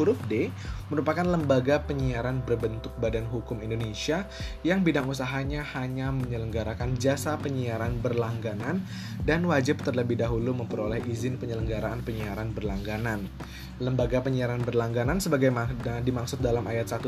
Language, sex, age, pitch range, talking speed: Indonesian, male, 20-39, 110-135 Hz, 110 wpm